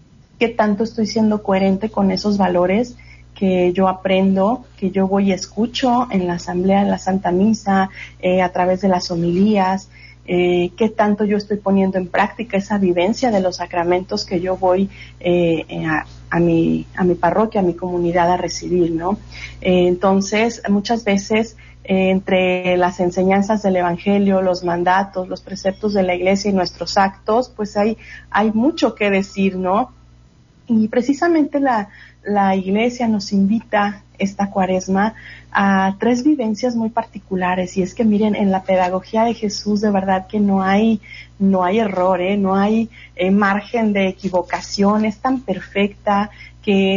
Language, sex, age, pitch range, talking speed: Spanish, female, 40-59, 185-215 Hz, 160 wpm